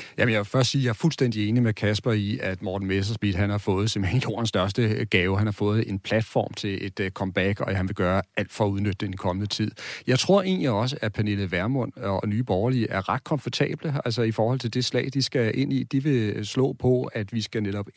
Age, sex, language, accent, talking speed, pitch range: 40-59, male, Danish, native, 245 wpm, 100-125 Hz